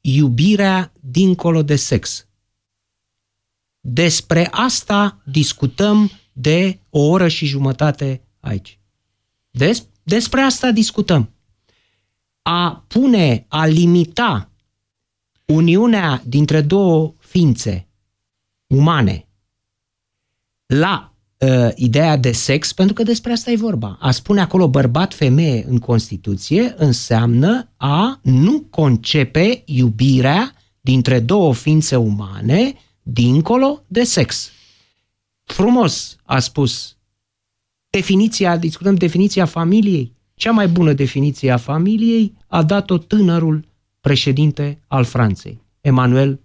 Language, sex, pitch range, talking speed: Romanian, male, 110-175 Hz, 95 wpm